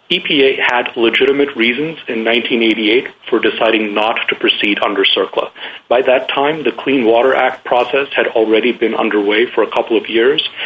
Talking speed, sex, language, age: 170 wpm, male, English, 40-59